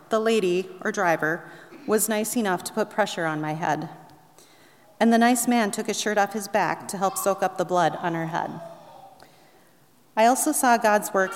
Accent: American